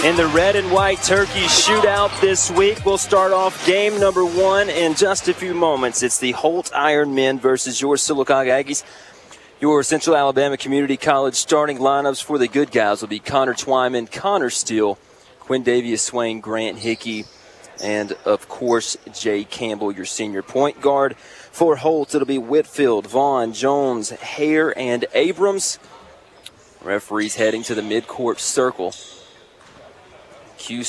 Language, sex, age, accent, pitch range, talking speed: English, male, 30-49, American, 120-155 Hz, 150 wpm